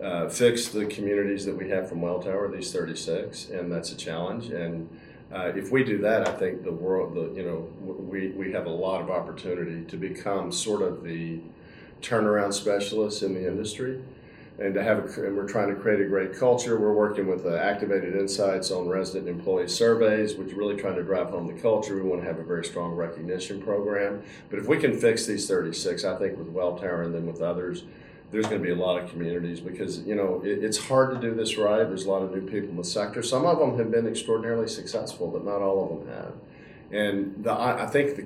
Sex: male